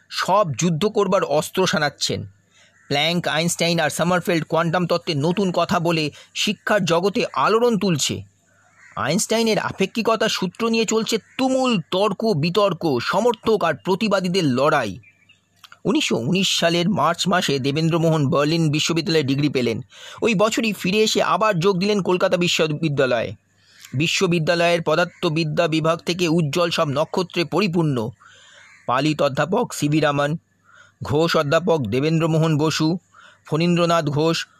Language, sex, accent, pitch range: Bengali, male, native, 145-185 Hz